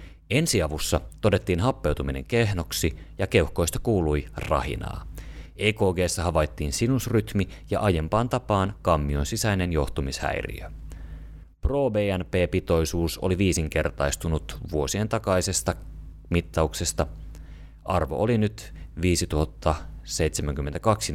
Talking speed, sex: 80 wpm, male